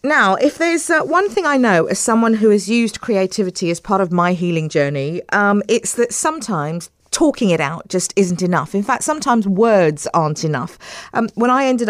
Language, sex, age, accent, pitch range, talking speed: English, female, 40-59, British, 170-235 Hz, 200 wpm